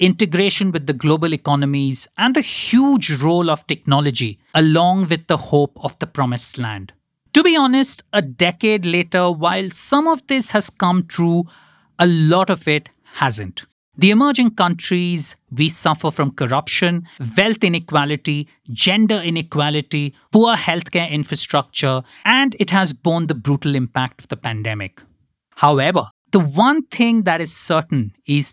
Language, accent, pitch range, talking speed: English, Indian, 135-185 Hz, 145 wpm